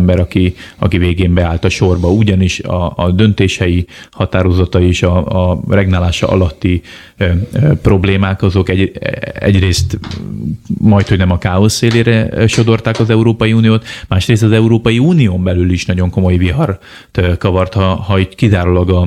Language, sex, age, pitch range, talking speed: Hungarian, male, 30-49, 95-110 Hz, 145 wpm